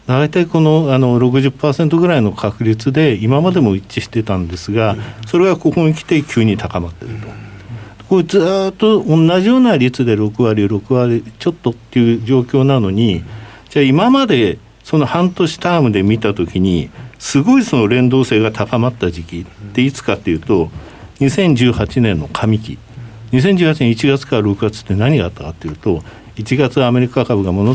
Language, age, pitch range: Japanese, 60-79, 105-140 Hz